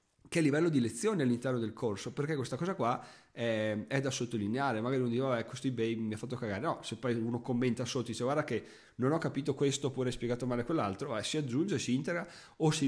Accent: native